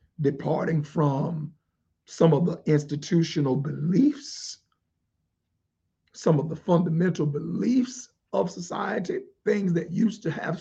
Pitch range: 155-220 Hz